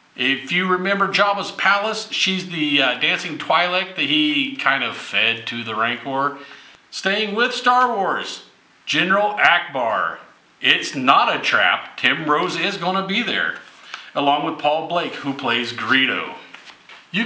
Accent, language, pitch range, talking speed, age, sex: American, English, 135-195 Hz, 150 wpm, 40-59, male